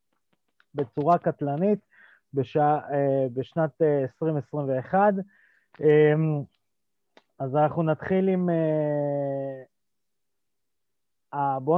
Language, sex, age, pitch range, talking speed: Hebrew, male, 30-49, 135-175 Hz, 50 wpm